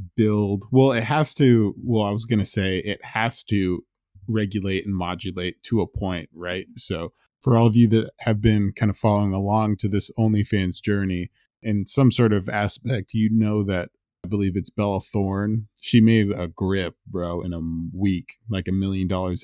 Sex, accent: male, American